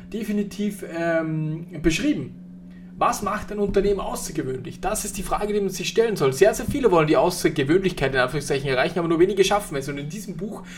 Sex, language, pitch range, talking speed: male, German, 145-195 Hz, 195 wpm